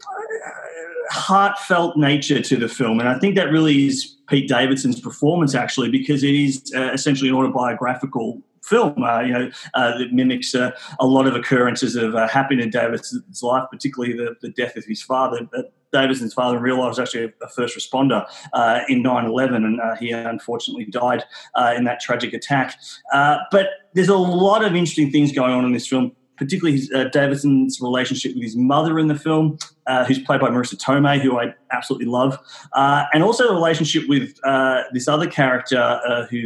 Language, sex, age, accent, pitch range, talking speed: English, male, 30-49, Australian, 125-150 Hz, 190 wpm